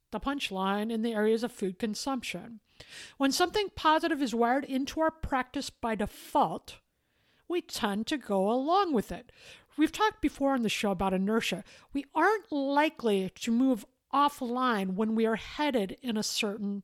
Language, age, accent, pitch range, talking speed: English, 50-69, American, 220-290 Hz, 165 wpm